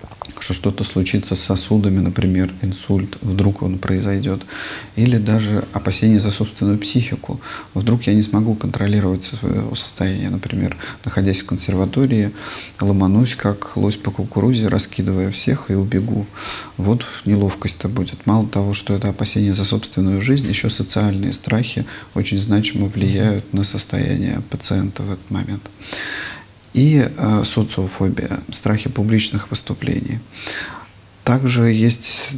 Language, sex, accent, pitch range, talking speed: Russian, male, native, 95-110 Hz, 120 wpm